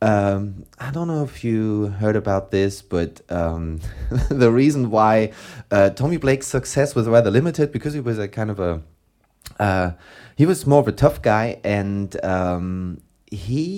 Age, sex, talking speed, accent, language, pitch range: 30-49, male, 170 wpm, German, English, 95-130 Hz